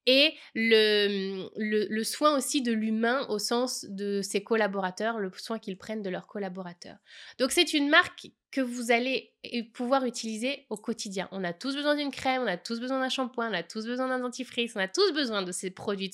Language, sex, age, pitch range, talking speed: French, female, 20-39, 195-245 Hz, 210 wpm